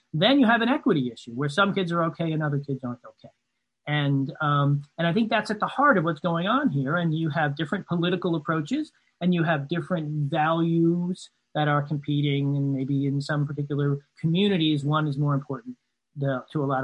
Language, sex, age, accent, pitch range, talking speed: English, male, 40-59, American, 145-195 Hz, 205 wpm